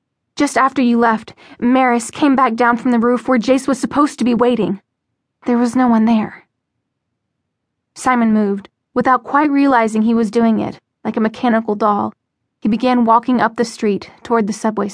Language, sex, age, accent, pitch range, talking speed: English, female, 10-29, American, 220-265 Hz, 180 wpm